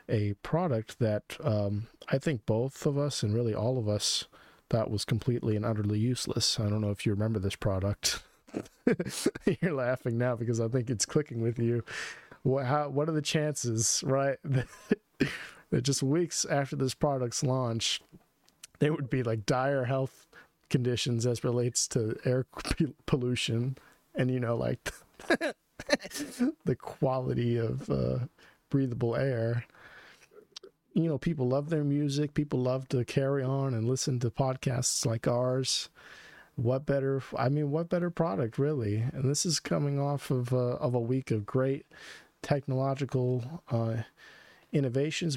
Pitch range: 115-145 Hz